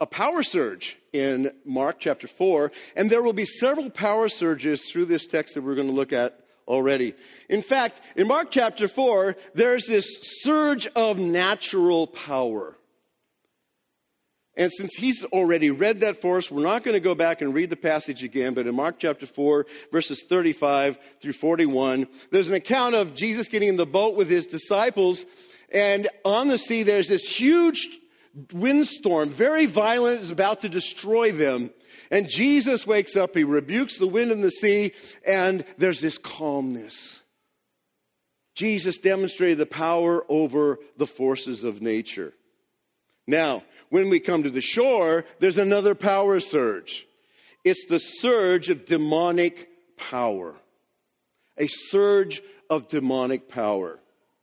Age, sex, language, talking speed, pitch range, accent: 50-69, male, English, 150 wpm, 150-230 Hz, American